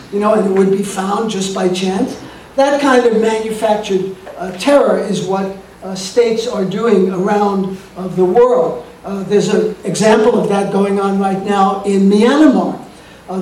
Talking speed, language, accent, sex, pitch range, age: 175 wpm, English, American, male, 190-230 Hz, 50-69